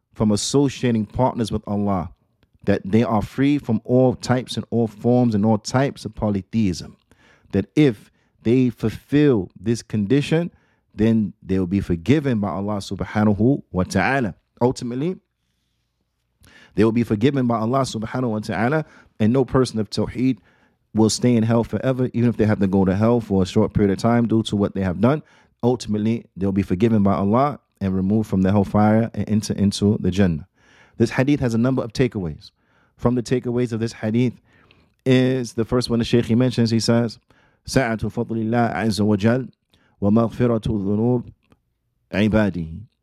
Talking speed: 165 wpm